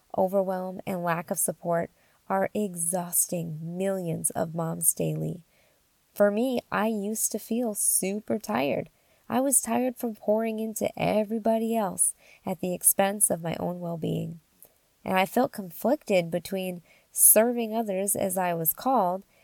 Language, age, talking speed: English, 20-39, 140 wpm